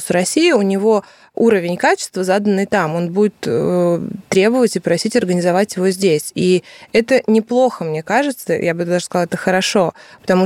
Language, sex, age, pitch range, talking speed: Russian, female, 20-39, 180-215 Hz, 160 wpm